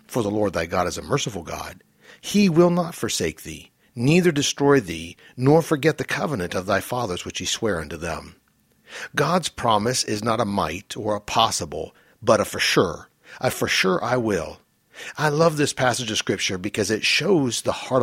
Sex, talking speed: male, 195 wpm